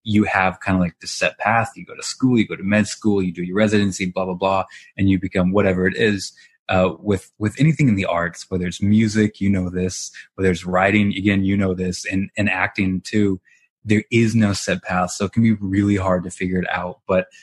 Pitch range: 90-105 Hz